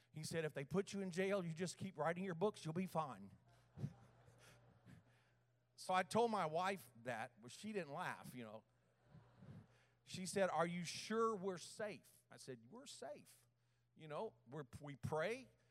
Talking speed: 170 wpm